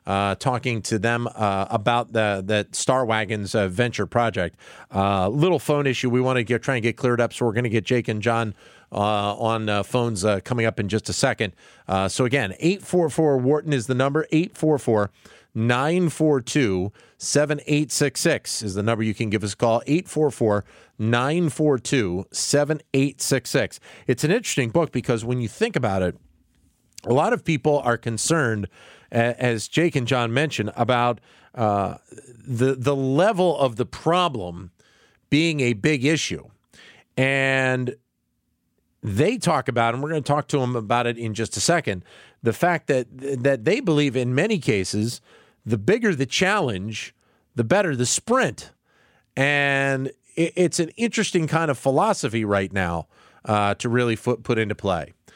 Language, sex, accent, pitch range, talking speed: English, male, American, 110-145 Hz, 165 wpm